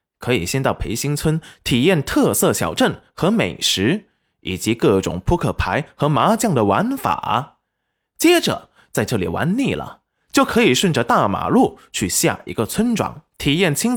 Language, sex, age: Chinese, male, 20-39